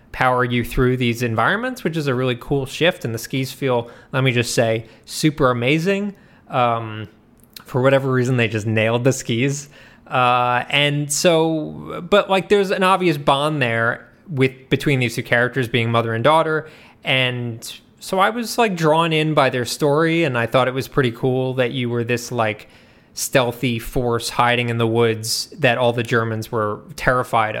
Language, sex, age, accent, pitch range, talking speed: English, male, 20-39, American, 115-140 Hz, 185 wpm